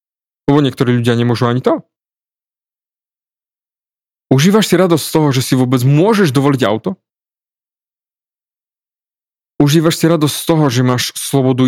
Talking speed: 130 wpm